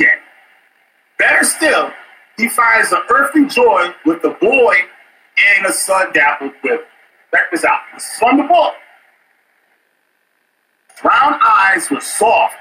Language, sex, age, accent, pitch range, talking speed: English, male, 40-59, American, 240-350 Hz, 130 wpm